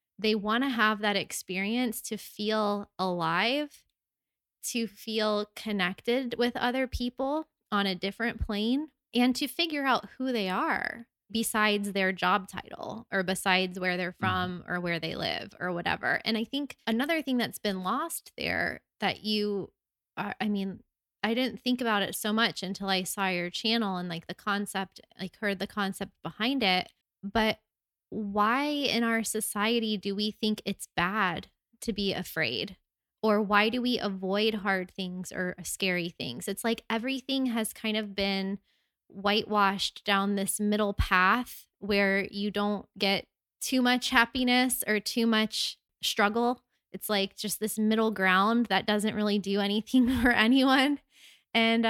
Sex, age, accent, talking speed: female, 20-39, American, 160 wpm